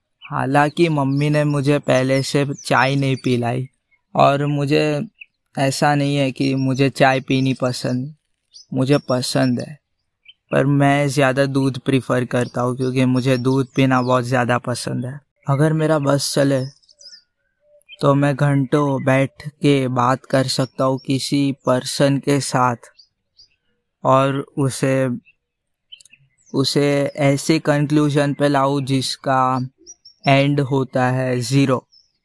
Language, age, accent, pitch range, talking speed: Hindi, 20-39, native, 130-140 Hz, 125 wpm